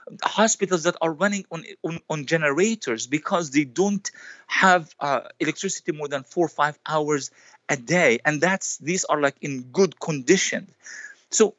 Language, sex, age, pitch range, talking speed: English, male, 50-69, 145-185 Hz, 160 wpm